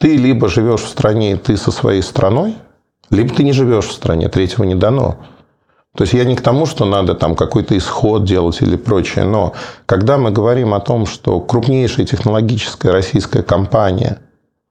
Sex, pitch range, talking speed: male, 95-125 Hz, 180 wpm